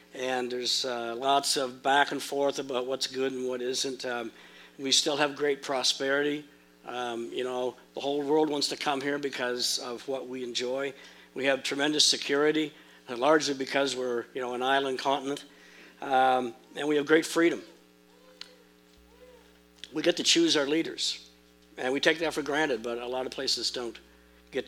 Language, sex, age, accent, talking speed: English, male, 60-79, American, 175 wpm